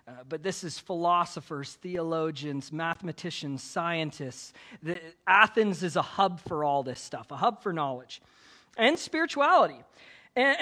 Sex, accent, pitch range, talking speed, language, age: male, American, 155-240 Hz, 135 wpm, English, 40-59